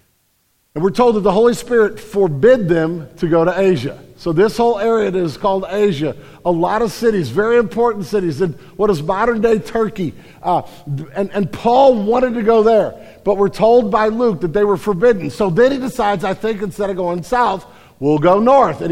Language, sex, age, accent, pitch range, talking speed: English, male, 50-69, American, 175-230 Hz, 205 wpm